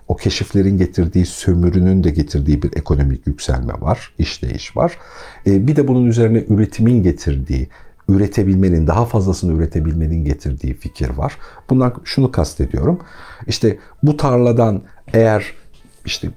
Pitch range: 80-120 Hz